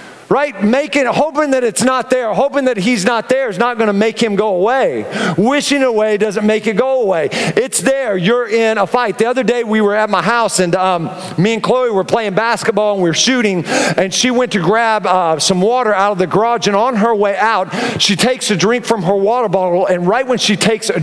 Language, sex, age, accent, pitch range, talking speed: English, male, 40-59, American, 180-230 Hz, 240 wpm